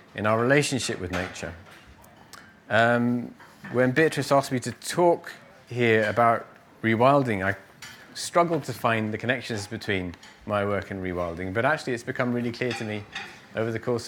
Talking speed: 160 wpm